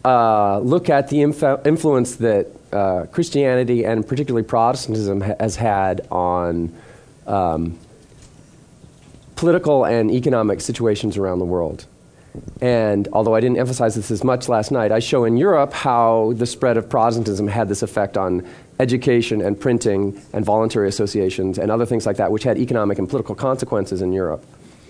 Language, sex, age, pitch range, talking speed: English, male, 40-59, 105-135 Hz, 155 wpm